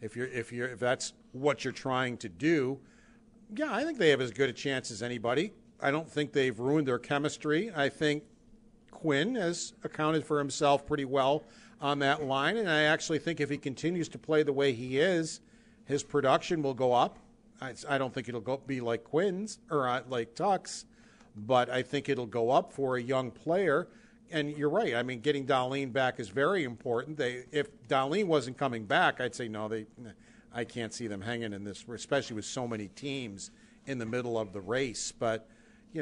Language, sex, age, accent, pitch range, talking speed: English, male, 50-69, American, 125-155 Hz, 205 wpm